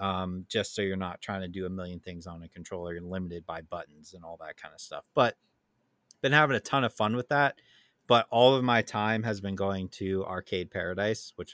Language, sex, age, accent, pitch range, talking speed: English, male, 30-49, American, 100-115 Hz, 235 wpm